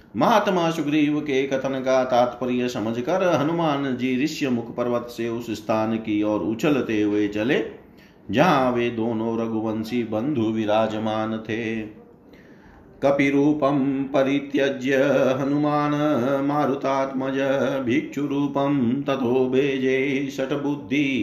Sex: male